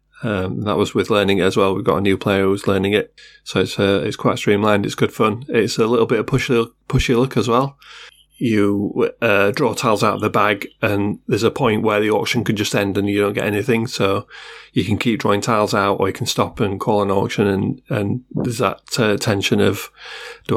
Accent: British